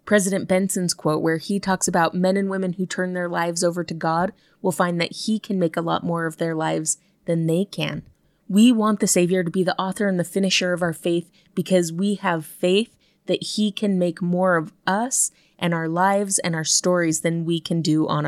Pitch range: 170-200 Hz